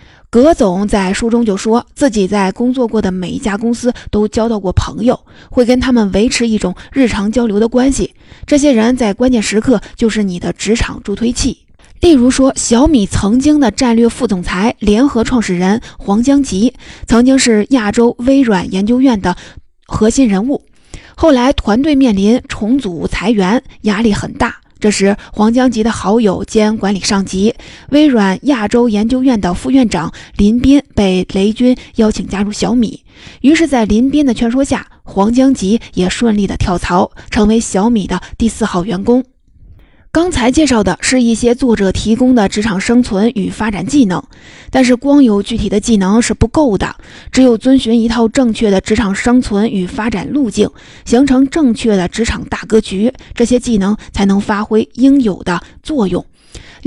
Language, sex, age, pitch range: Chinese, female, 20-39, 205-250 Hz